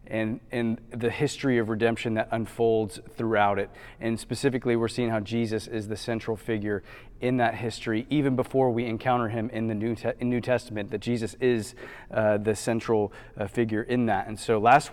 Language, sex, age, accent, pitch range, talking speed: English, male, 30-49, American, 105-120 Hz, 185 wpm